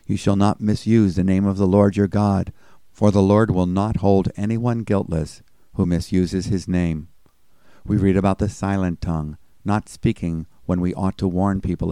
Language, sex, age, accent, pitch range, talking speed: English, male, 50-69, American, 90-105 Hz, 185 wpm